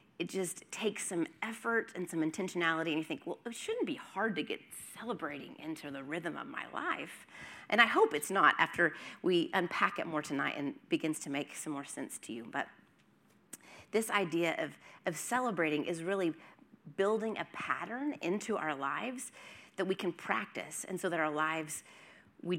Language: English